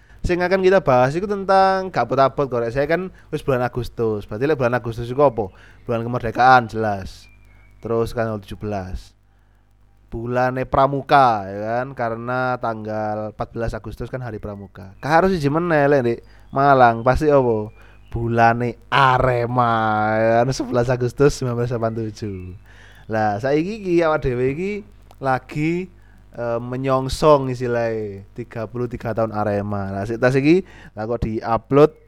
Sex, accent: male, native